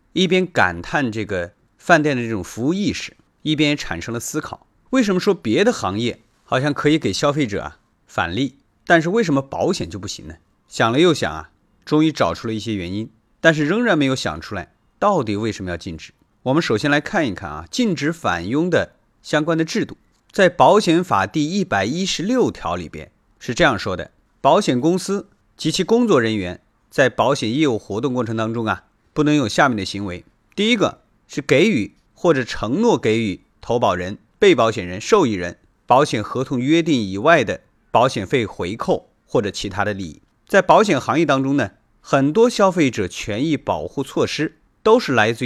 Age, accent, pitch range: 30-49, native, 105-165 Hz